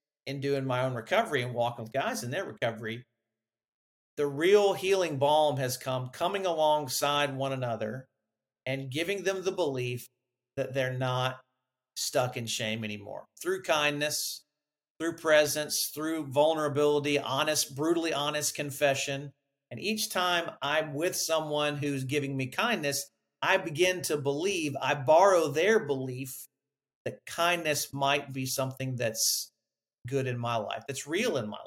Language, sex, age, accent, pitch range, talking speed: English, male, 50-69, American, 135-165 Hz, 145 wpm